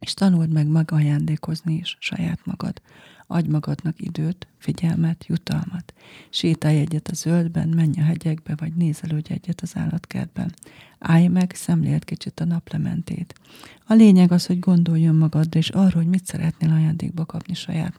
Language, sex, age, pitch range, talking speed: Hungarian, female, 40-59, 155-175 Hz, 150 wpm